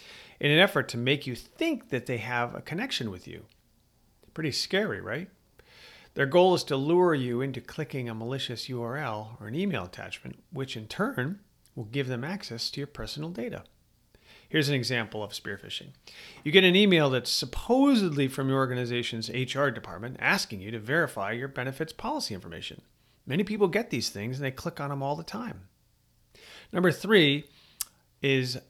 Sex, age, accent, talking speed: male, 40-59, American, 175 wpm